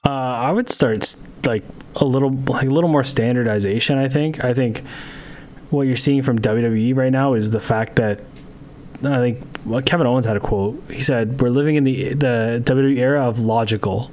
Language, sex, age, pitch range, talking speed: English, male, 20-39, 120-145 Hz, 195 wpm